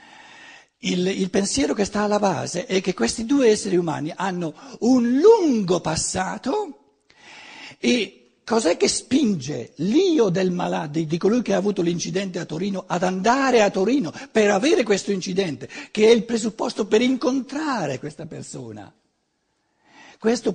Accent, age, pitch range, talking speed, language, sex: native, 60-79, 175-265 Hz, 145 wpm, Italian, male